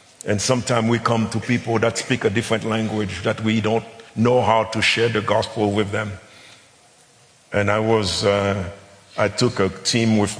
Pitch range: 100-120 Hz